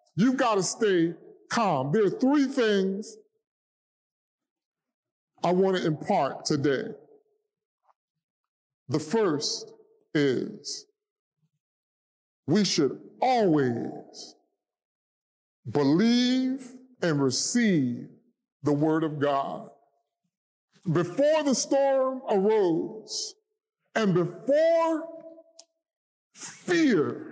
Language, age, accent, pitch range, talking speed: English, 40-59, American, 195-325 Hz, 75 wpm